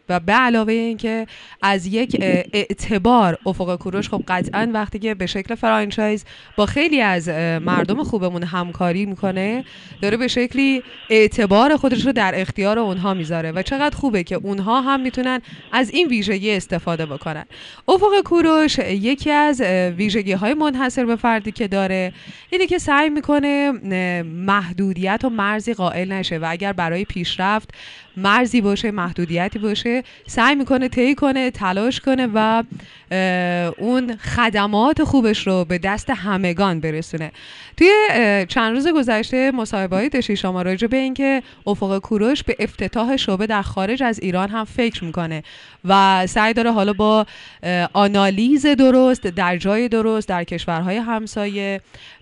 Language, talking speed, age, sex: Persian, 145 wpm, 20-39, female